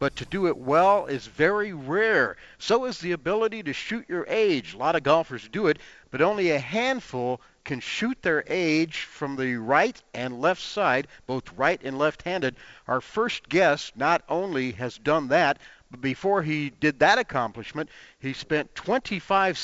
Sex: male